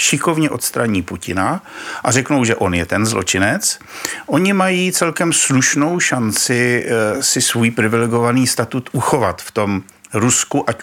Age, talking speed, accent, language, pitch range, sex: 50-69, 135 wpm, native, Czech, 100-140 Hz, male